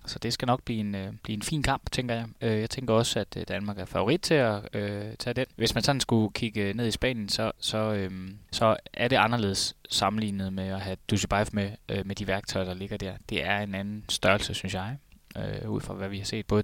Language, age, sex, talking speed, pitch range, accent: Danish, 20-39, male, 255 wpm, 100-115 Hz, native